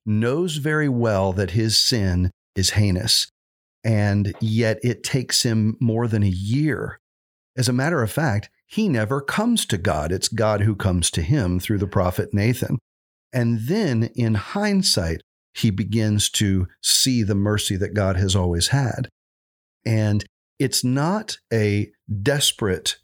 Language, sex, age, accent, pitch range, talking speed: English, male, 50-69, American, 100-130 Hz, 150 wpm